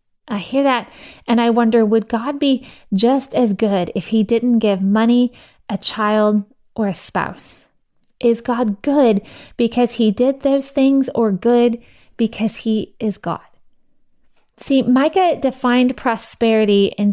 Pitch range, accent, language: 205-235 Hz, American, English